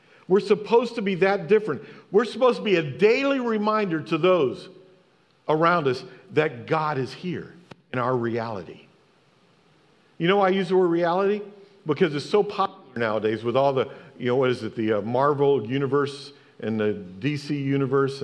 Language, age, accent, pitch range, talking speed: English, 50-69, American, 130-195 Hz, 175 wpm